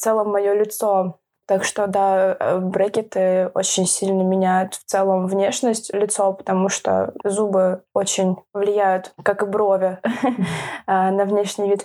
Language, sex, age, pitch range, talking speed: Russian, female, 20-39, 200-240 Hz, 130 wpm